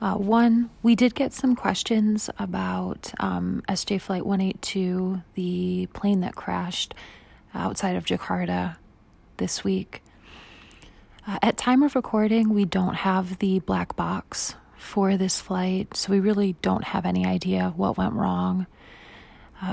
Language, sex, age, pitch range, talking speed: English, female, 30-49, 185-210 Hz, 140 wpm